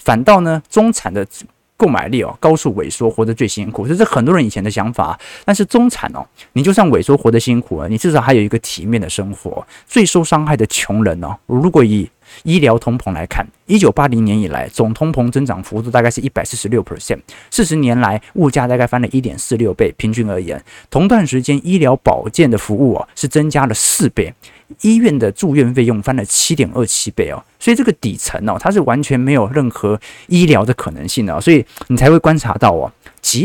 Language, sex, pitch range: Chinese, male, 110-150 Hz